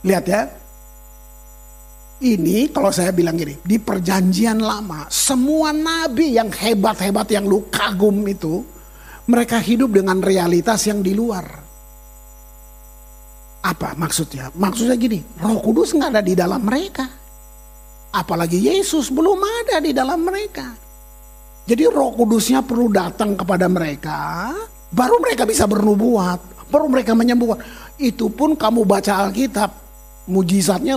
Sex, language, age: male, Indonesian, 50-69